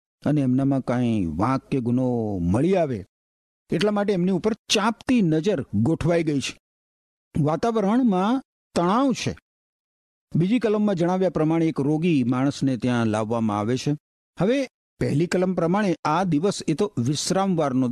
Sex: male